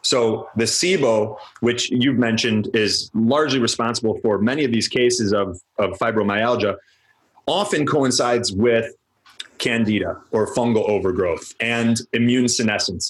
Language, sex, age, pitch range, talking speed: English, male, 30-49, 110-125 Hz, 125 wpm